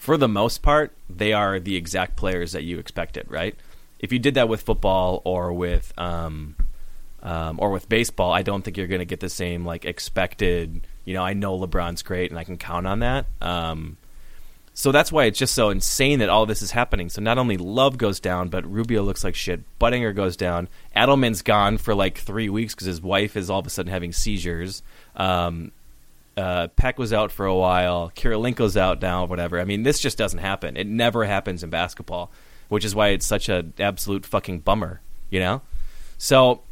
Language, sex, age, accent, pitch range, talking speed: English, male, 30-49, American, 90-110 Hz, 210 wpm